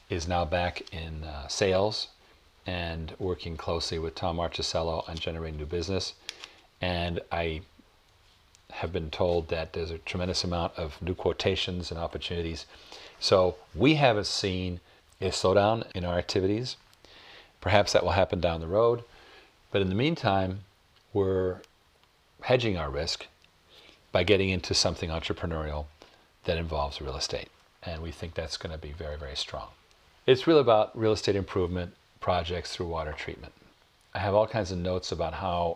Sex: male